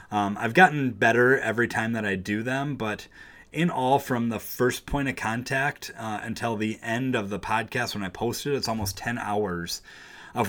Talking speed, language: 200 wpm, English